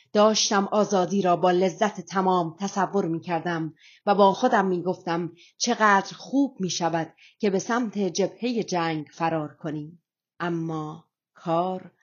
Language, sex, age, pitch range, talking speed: Persian, female, 30-49, 175-220 Hz, 135 wpm